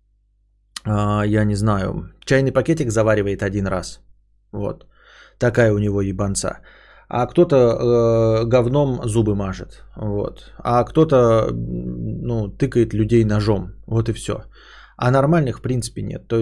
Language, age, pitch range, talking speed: Russian, 20-39, 105-135 Hz, 130 wpm